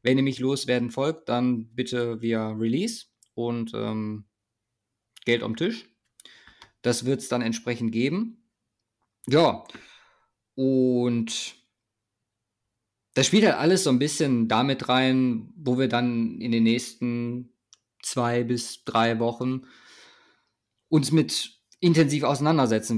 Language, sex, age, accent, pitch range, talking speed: German, male, 20-39, German, 115-135 Hz, 120 wpm